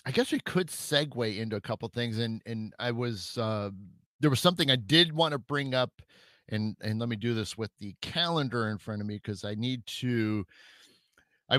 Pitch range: 105-130 Hz